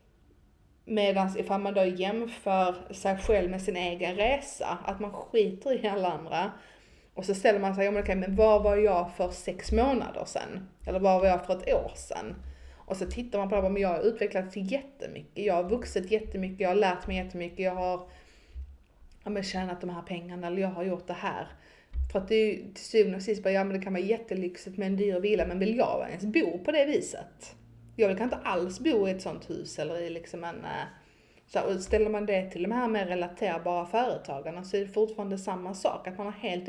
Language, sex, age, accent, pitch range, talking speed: Swedish, female, 30-49, native, 175-205 Hz, 215 wpm